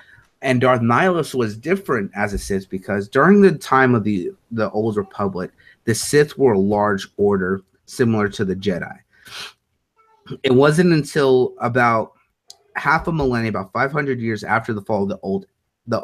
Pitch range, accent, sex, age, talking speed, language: 105-130 Hz, American, male, 30-49, 170 wpm, English